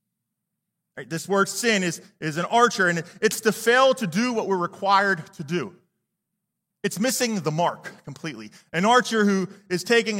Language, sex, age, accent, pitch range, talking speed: English, male, 30-49, American, 165-210 Hz, 165 wpm